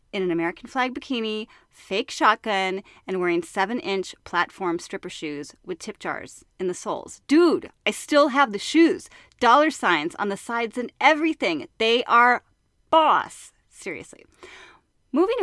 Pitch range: 200-315 Hz